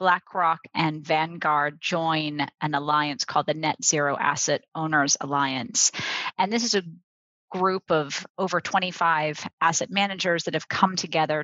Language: English